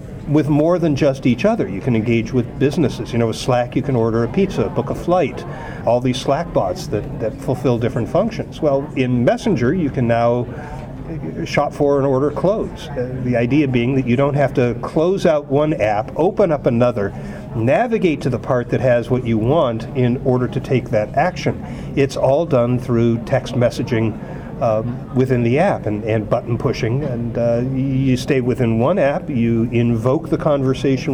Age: 50-69